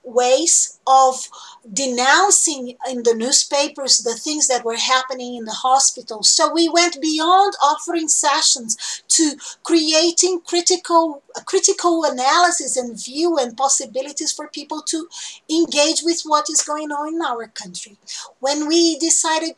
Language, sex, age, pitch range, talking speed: English, female, 40-59, 255-340 Hz, 135 wpm